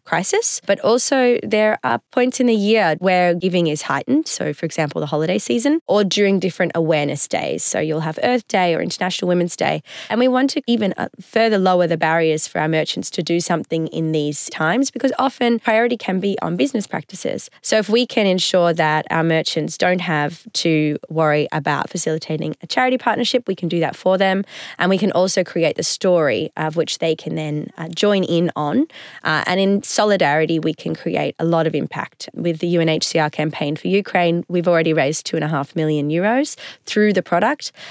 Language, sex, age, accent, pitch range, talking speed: English, female, 20-39, Australian, 155-210 Hz, 205 wpm